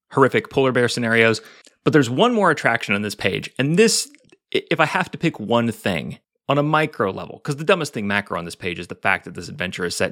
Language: English